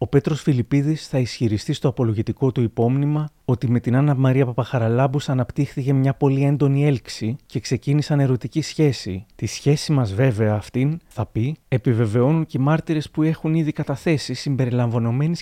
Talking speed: 155 wpm